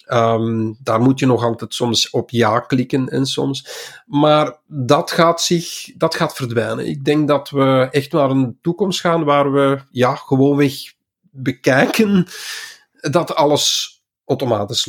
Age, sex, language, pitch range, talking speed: 50-69, male, Dutch, 120-150 Hz, 150 wpm